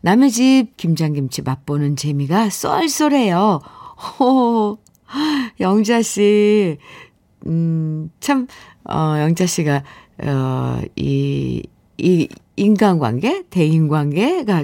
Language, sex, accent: Korean, female, native